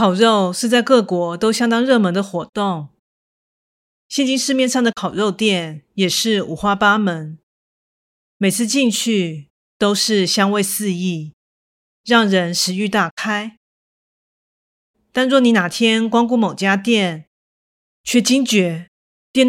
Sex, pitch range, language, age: female, 185-245 Hz, Chinese, 30-49